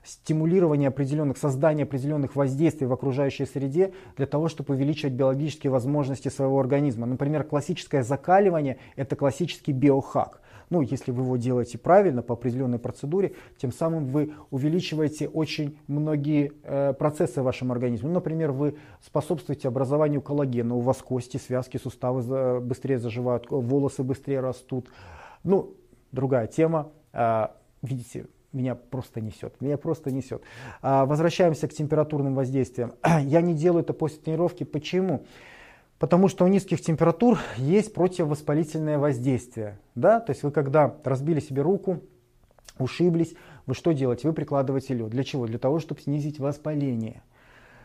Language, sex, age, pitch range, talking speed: Russian, male, 30-49, 130-160 Hz, 140 wpm